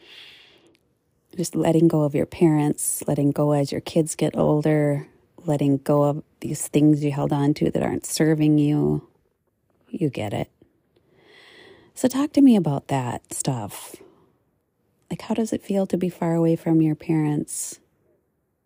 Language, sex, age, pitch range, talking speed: English, female, 30-49, 145-170 Hz, 155 wpm